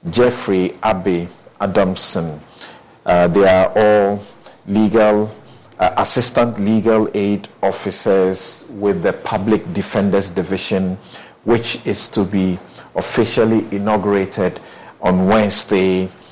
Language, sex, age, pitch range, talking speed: English, male, 50-69, 95-115 Hz, 95 wpm